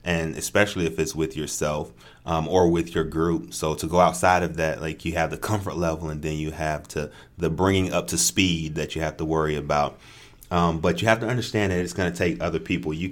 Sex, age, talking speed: male, 30-49, 245 wpm